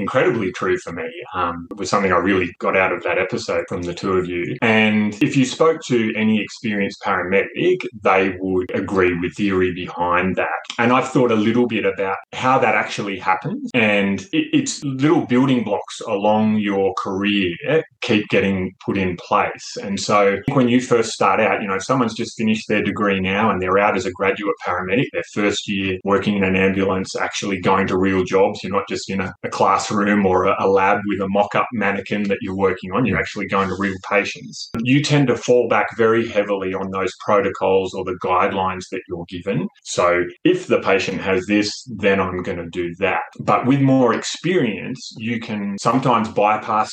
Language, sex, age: English, male, 20-39